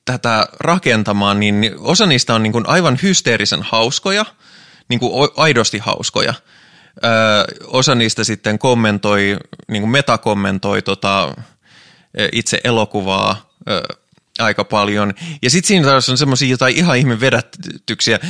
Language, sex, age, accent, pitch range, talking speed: Finnish, male, 20-39, native, 105-135 Hz, 130 wpm